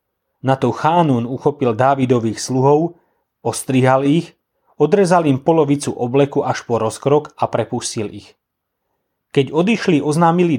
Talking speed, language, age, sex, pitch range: 120 wpm, Slovak, 30-49, male, 125-155 Hz